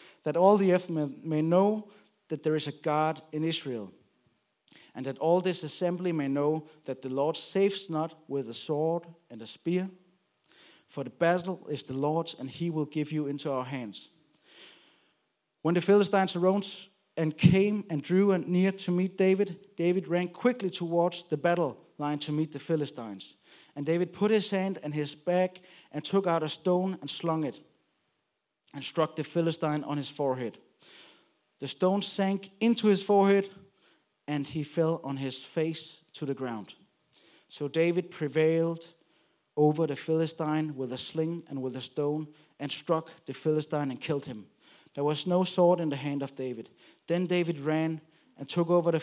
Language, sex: Danish, male